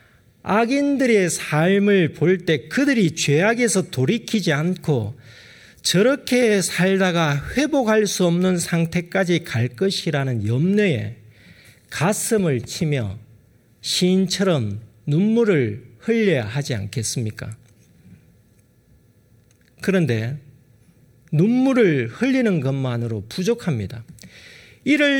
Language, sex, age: Korean, male, 40-59